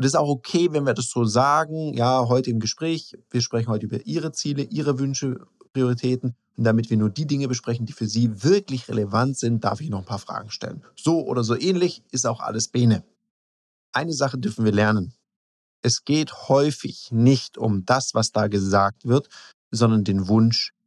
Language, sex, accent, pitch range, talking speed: German, male, German, 110-140 Hz, 200 wpm